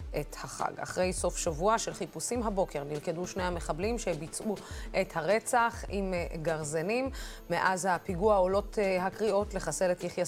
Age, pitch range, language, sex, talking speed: 20-39, 170-215 Hz, Hebrew, female, 135 wpm